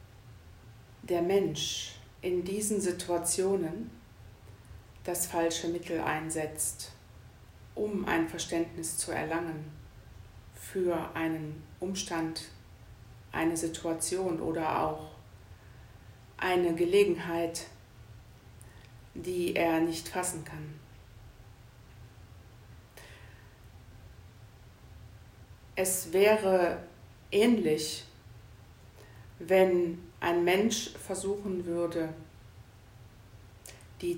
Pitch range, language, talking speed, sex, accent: 110-170 Hz, German, 65 wpm, female, German